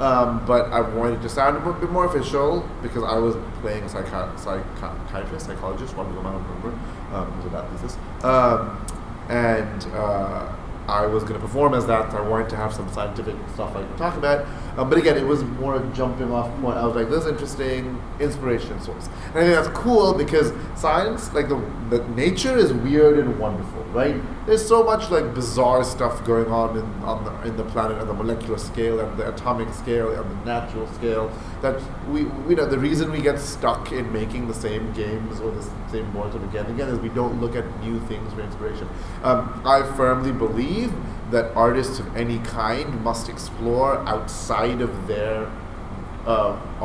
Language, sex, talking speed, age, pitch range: English, male, 195 wpm, 30-49, 105-125 Hz